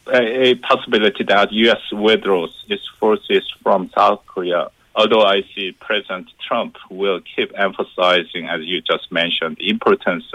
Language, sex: English, male